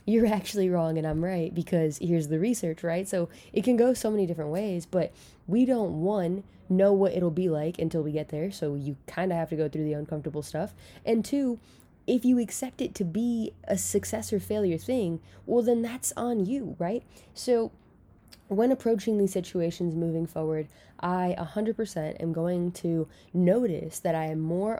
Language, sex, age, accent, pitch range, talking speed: English, female, 10-29, American, 160-200 Hz, 190 wpm